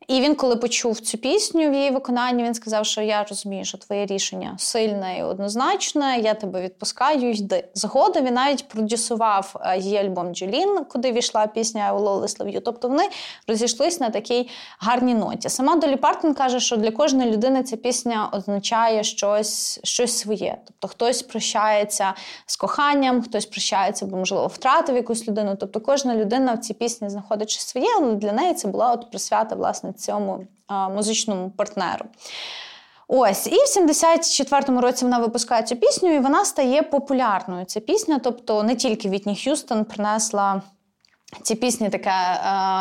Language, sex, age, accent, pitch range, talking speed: Ukrainian, female, 20-39, native, 205-270 Hz, 155 wpm